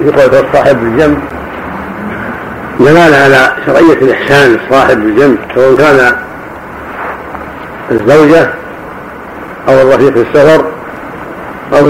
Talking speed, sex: 80 wpm, male